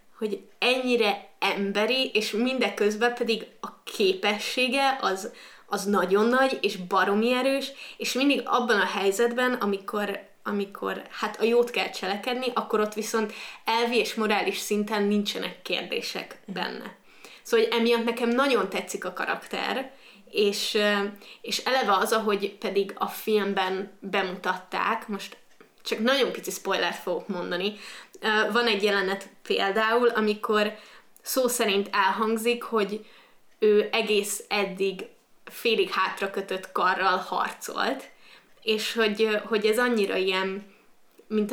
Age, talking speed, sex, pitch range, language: 20-39, 120 wpm, female, 200-235 Hz, Hungarian